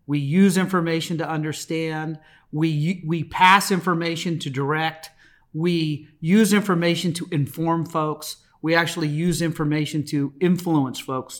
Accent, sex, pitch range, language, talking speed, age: American, male, 150-180 Hz, English, 125 wpm, 40-59